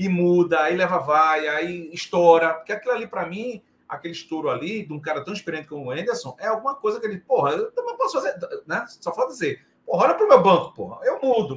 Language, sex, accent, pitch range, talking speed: Portuguese, male, Brazilian, 160-220 Hz, 240 wpm